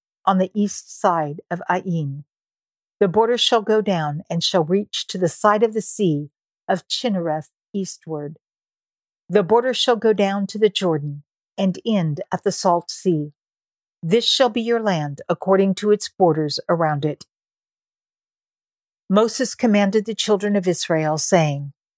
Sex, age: female, 50-69